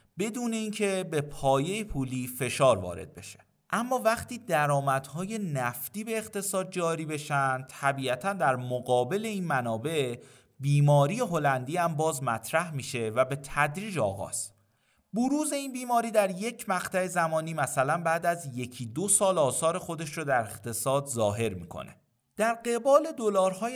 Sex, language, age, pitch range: male, Persian, 30-49, 120-195 Hz